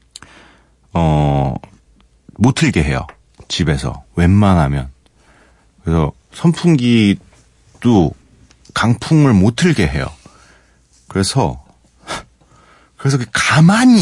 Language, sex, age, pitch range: Korean, male, 40-59, 75-115 Hz